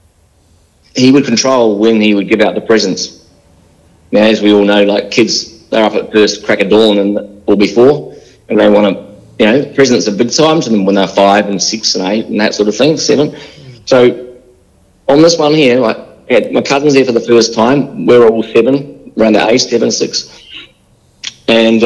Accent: Australian